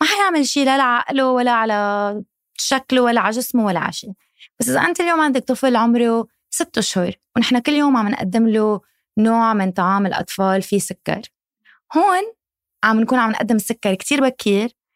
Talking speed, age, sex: 175 wpm, 20-39, female